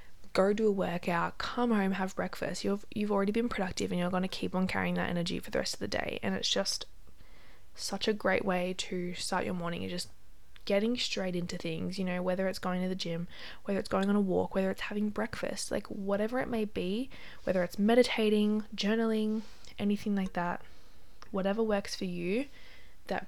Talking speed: 205 wpm